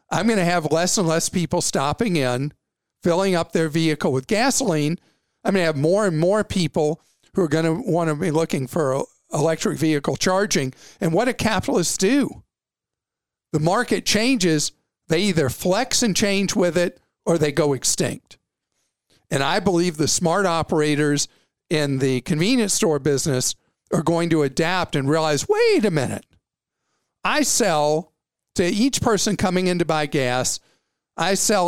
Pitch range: 150-195 Hz